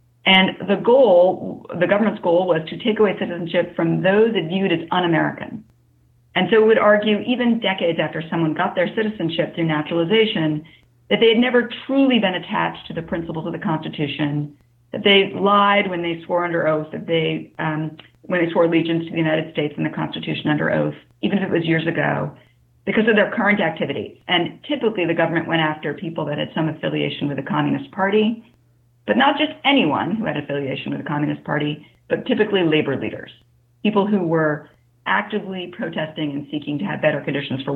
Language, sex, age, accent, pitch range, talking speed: English, female, 40-59, American, 145-200 Hz, 195 wpm